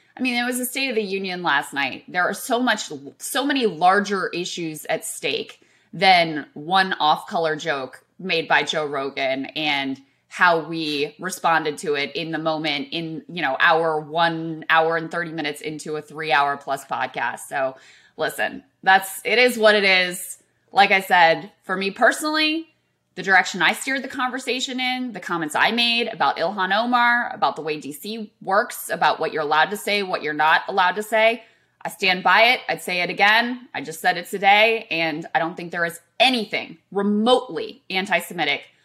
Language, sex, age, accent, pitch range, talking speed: English, female, 20-39, American, 155-215 Hz, 185 wpm